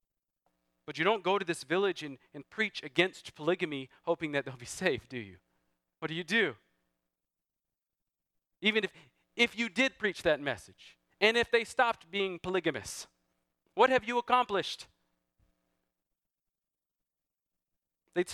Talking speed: 135 wpm